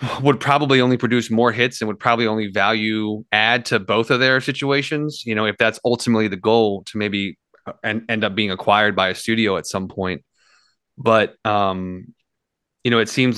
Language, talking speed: English, 190 wpm